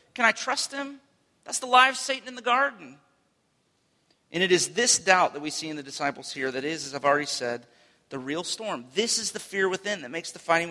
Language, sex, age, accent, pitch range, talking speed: English, male, 40-59, American, 130-180 Hz, 235 wpm